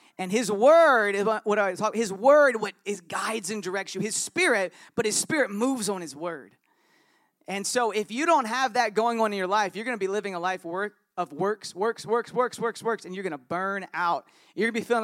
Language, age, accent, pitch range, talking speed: English, 40-59, American, 180-225 Hz, 245 wpm